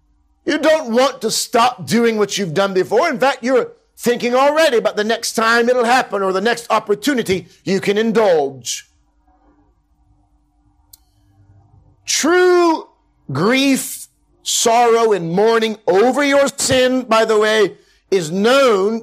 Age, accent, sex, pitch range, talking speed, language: 50-69, American, male, 150-225 Hz, 130 wpm, English